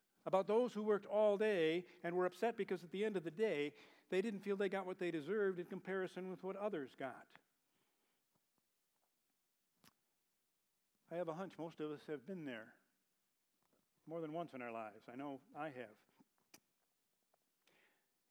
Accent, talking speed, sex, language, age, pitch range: American, 165 wpm, male, English, 50-69, 145-185 Hz